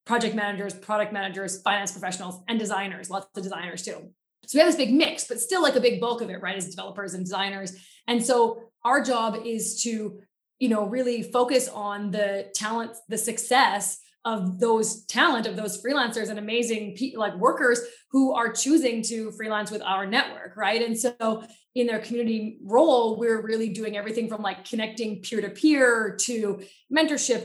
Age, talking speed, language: 20-39, 185 wpm, English